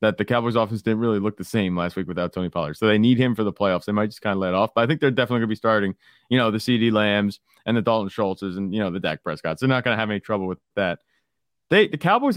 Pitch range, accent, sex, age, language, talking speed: 100-125 Hz, American, male, 30-49, English, 315 wpm